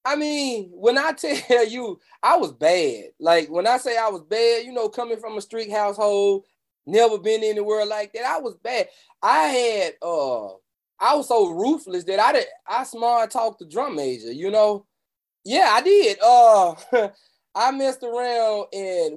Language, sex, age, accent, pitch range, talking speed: English, male, 20-39, American, 200-300 Hz, 180 wpm